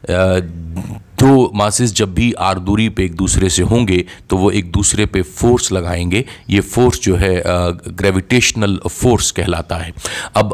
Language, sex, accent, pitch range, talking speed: Hindi, male, native, 90-120 Hz, 155 wpm